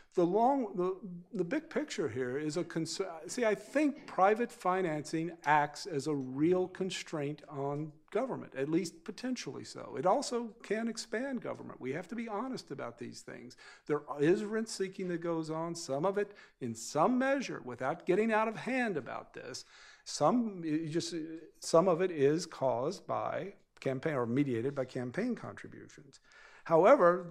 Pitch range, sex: 135-190 Hz, male